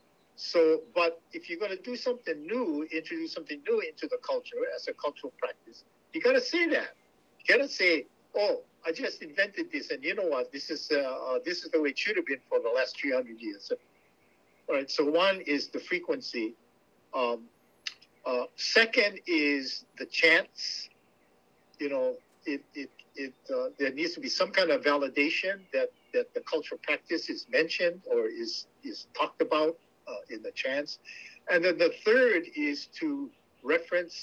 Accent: American